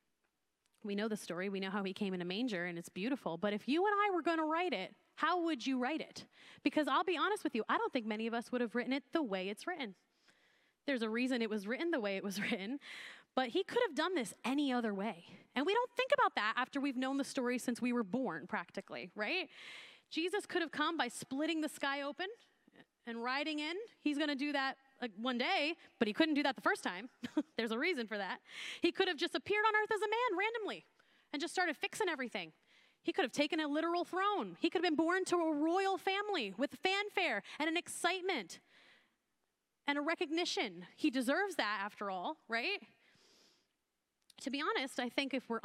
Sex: female